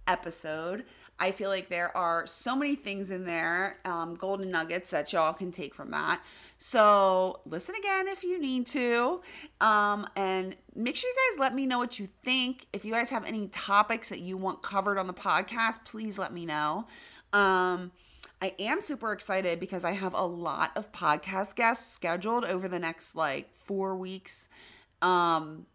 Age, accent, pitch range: 30-49, American, 175-235 Hz